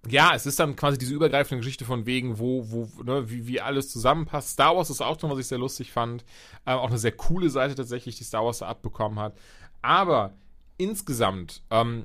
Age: 30-49